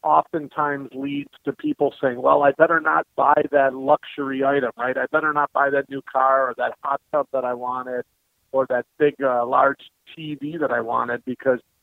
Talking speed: 195 wpm